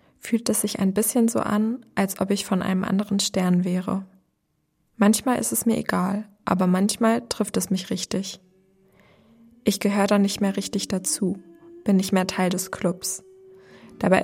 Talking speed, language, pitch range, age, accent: 170 wpm, German, 190-220 Hz, 20-39, German